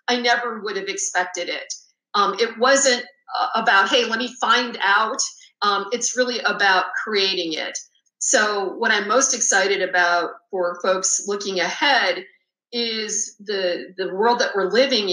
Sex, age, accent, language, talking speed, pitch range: female, 40-59, American, English, 150 wpm, 185-230 Hz